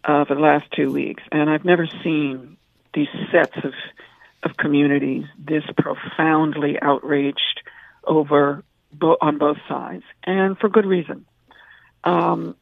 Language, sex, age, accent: English, female, 50-69, American